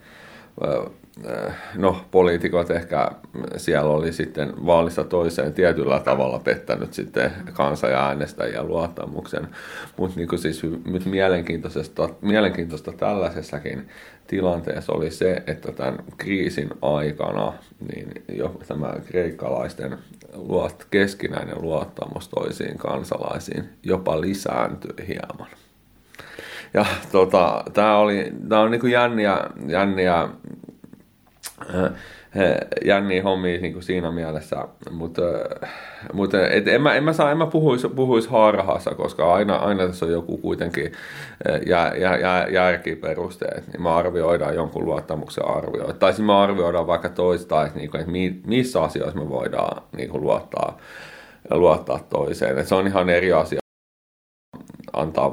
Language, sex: Finnish, male